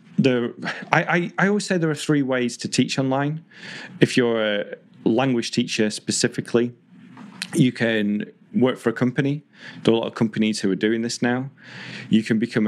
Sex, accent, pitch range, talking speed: male, British, 100-130 Hz, 185 wpm